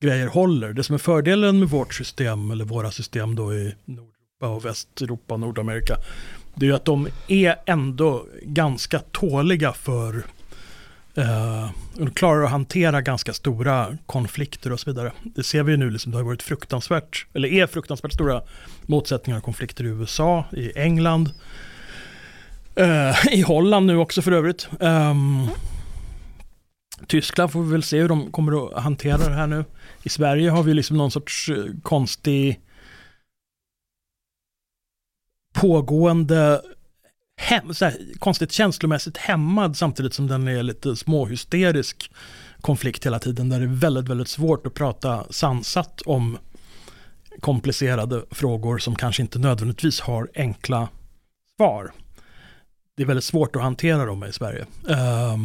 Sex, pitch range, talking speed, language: male, 120-160 Hz, 140 wpm, Swedish